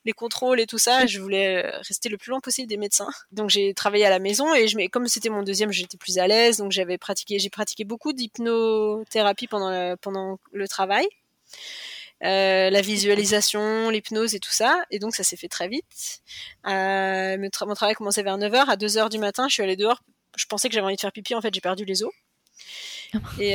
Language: English